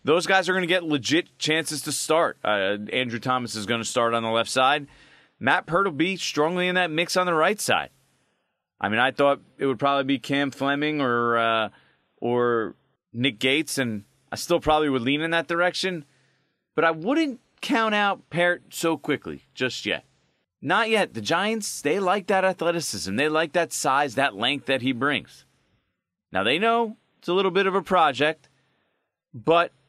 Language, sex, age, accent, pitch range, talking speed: English, male, 30-49, American, 120-165 Hz, 190 wpm